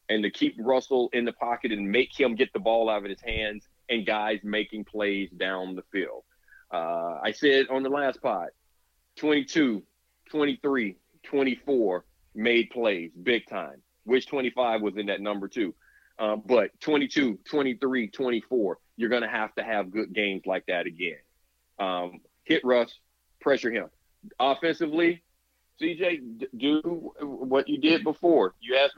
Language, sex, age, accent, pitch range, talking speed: English, male, 40-59, American, 110-160 Hz, 155 wpm